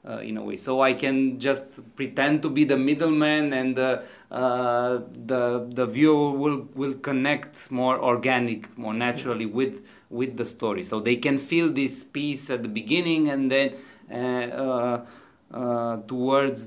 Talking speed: 160 wpm